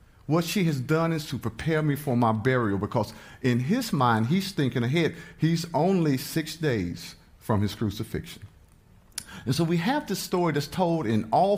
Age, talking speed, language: 50-69, 180 wpm, English